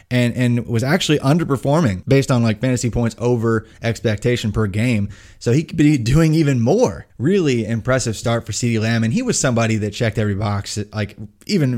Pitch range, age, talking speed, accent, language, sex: 105-130 Hz, 20-39, 190 wpm, American, English, male